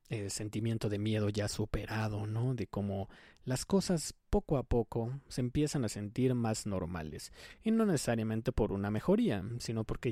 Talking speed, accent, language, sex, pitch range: 165 wpm, Mexican, Spanish, male, 105-130 Hz